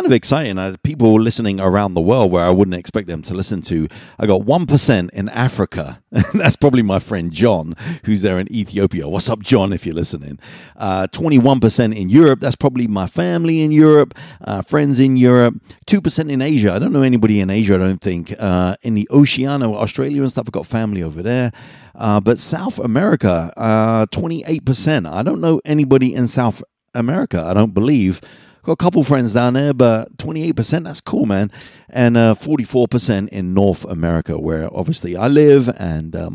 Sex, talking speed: male, 185 wpm